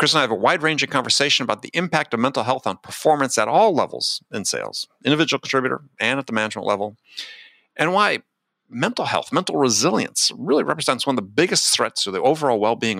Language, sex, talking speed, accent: English, male, 205 wpm, American